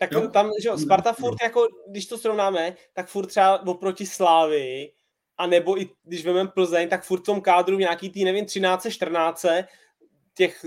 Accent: native